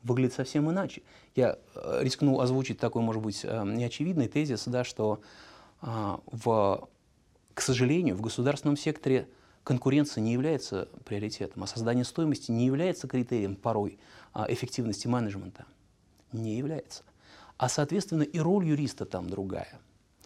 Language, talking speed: Russian, 115 wpm